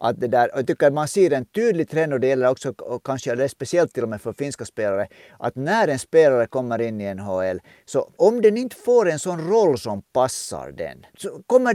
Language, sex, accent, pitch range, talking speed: Swedish, male, Finnish, 125-180 Hz, 240 wpm